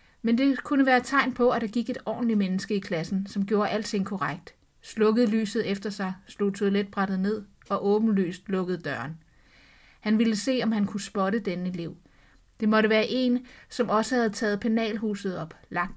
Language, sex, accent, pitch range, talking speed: Danish, female, native, 195-235 Hz, 190 wpm